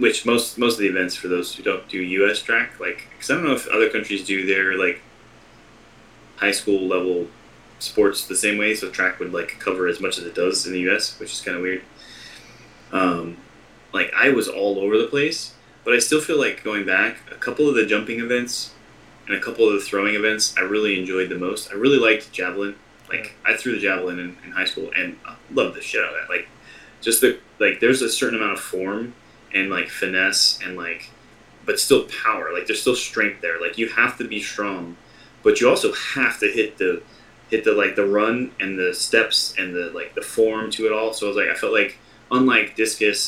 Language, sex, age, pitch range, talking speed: English, male, 20-39, 95-145 Hz, 225 wpm